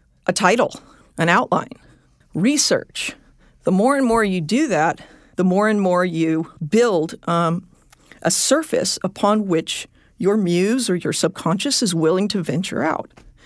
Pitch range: 180-230 Hz